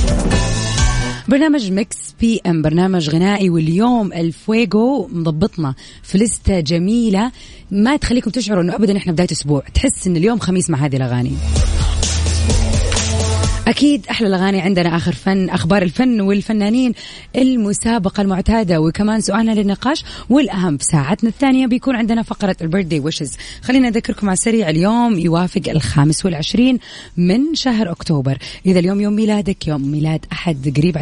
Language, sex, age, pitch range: Arabic, female, 20-39, 160-220 Hz